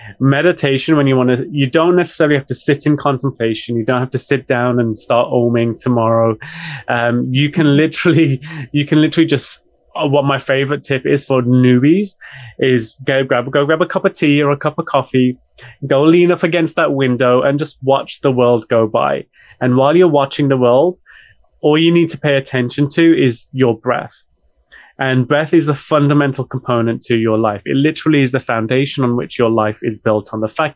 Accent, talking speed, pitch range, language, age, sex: British, 205 wpm, 120-150 Hz, English, 20-39, male